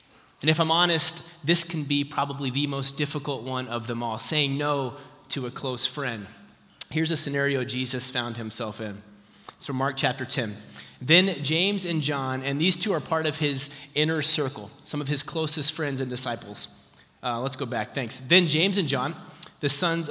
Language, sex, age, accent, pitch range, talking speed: English, male, 30-49, American, 130-160 Hz, 190 wpm